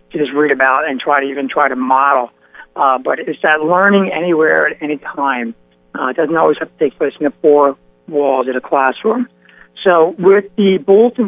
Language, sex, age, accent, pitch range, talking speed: English, male, 60-79, American, 140-195 Hz, 200 wpm